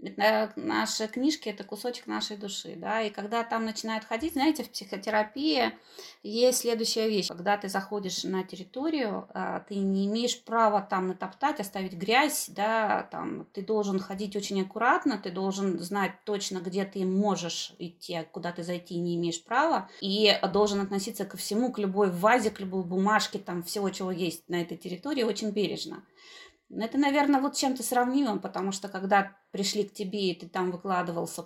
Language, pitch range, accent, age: Russian, 185-235 Hz, native, 20-39